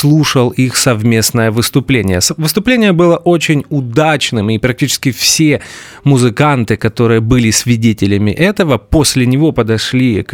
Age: 30-49